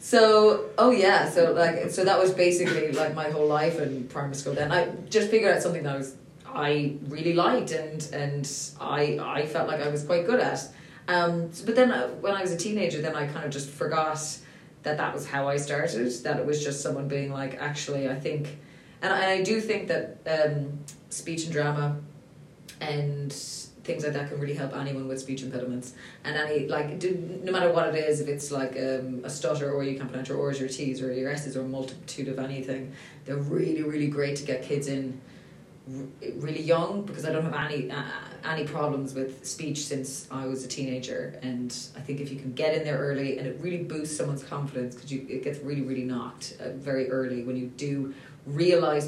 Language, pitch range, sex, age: English, 135-160 Hz, female, 20-39